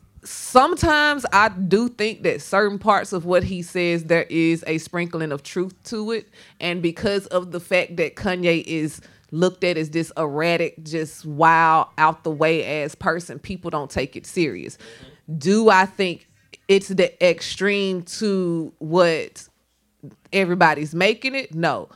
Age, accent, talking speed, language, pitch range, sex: 30-49, American, 155 wpm, English, 160-205 Hz, female